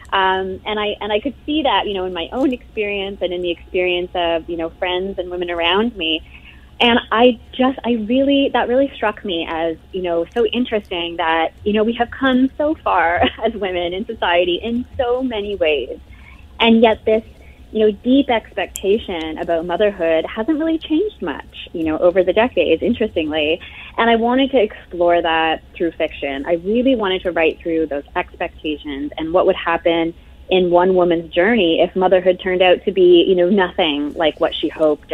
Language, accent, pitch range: English, American, 165-215 Hz